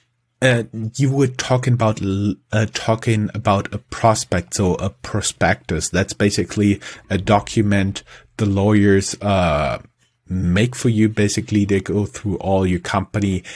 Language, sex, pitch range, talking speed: English, male, 95-115 Hz, 130 wpm